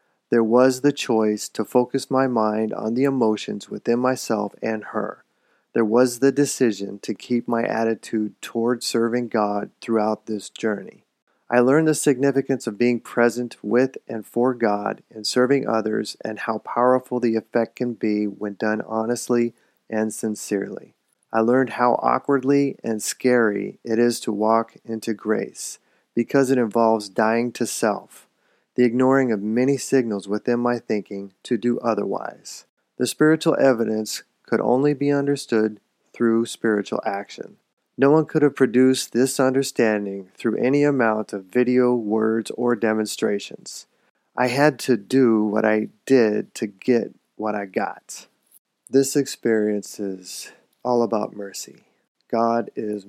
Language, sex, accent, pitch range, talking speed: English, male, American, 110-130 Hz, 145 wpm